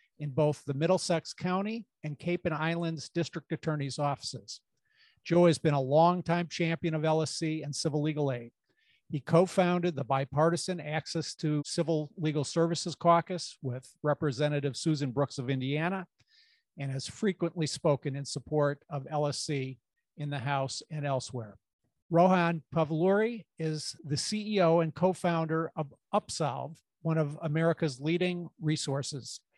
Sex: male